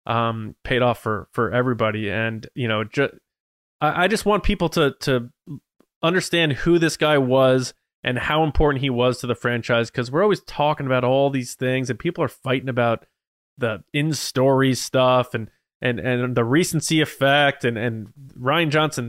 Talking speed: 175 wpm